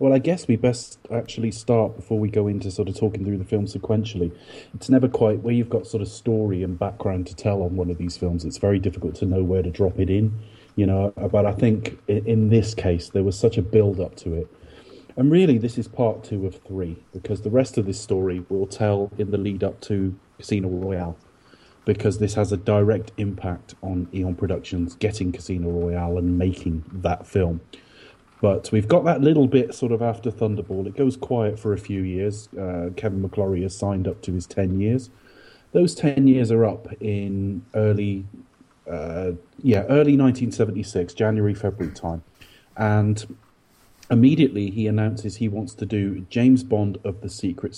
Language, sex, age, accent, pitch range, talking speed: English, male, 30-49, British, 95-115 Hz, 195 wpm